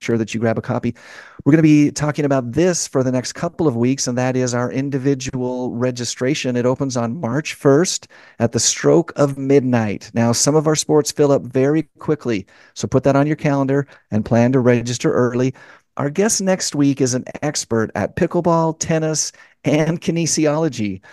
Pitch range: 115-145 Hz